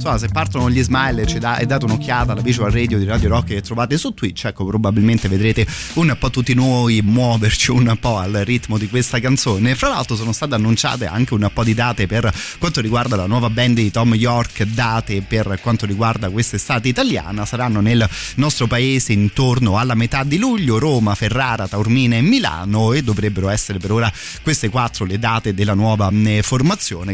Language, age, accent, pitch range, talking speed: Italian, 30-49, native, 105-125 Hz, 185 wpm